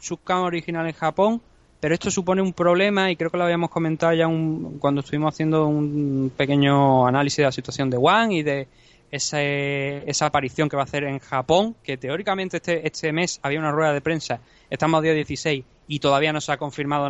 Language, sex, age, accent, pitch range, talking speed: Spanish, male, 20-39, Spanish, 140-170 Hz, 205 wpm